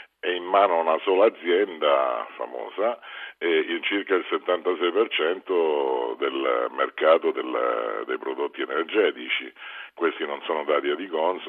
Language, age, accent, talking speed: Italian, 50-69, native, 130 wpm